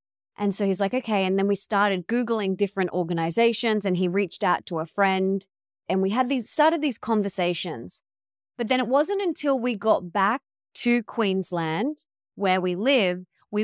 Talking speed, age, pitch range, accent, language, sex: 175 wpm, 20-39, 190-260 Hz, Australian, English, female